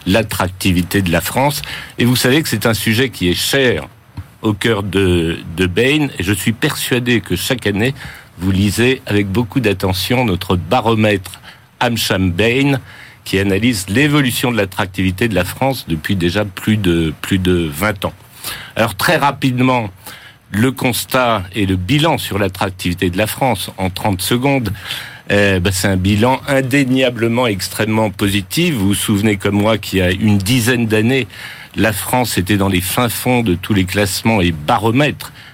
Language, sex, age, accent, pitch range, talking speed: French, male, 50-69, French, 95-125 Hz, 165 wpm